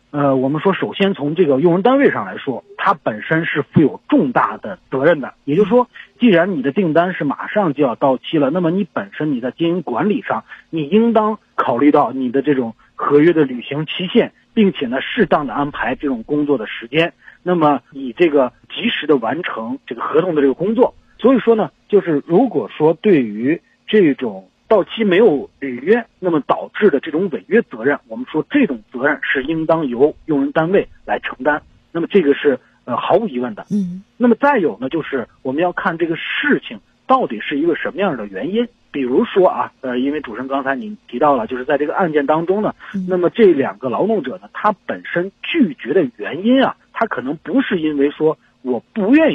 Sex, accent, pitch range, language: male, native, 145-215 Hz, Chinese